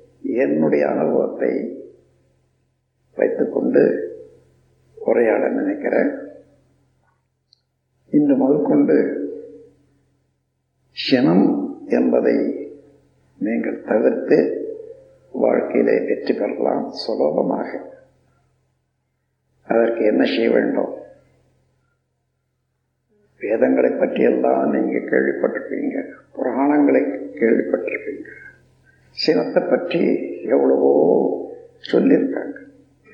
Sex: male